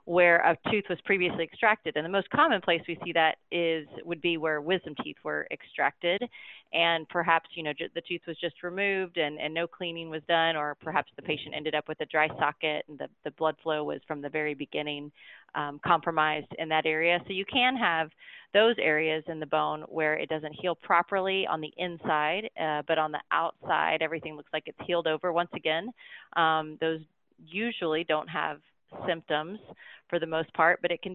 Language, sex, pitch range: English, female, 155-175 Hz